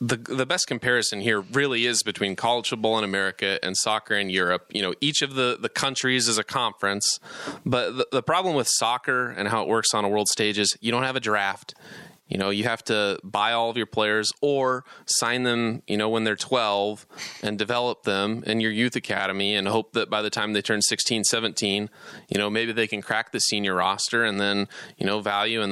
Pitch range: 100-120 Hz